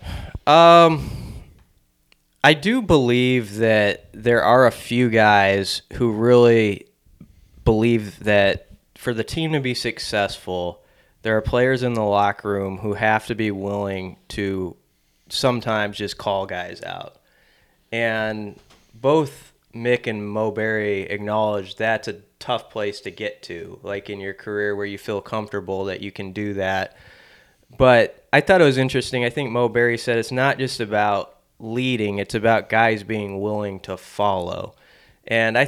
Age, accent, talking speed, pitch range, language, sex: 20-39, American, 150 wpm, 100-120 Hz, English, male